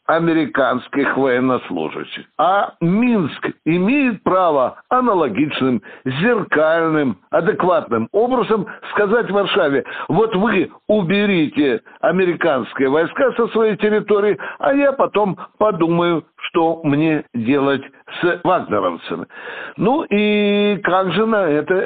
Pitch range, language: 150-210 Hz, Russian